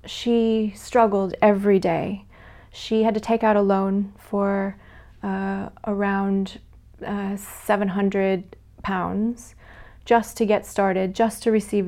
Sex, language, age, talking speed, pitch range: female, English, 30-49, 115 wpm, 185-215 Hz